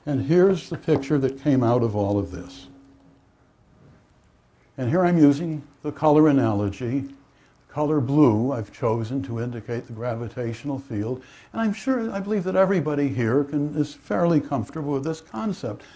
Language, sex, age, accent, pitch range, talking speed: English, male, 60-79, American, 120-160 Hz, 155 wpm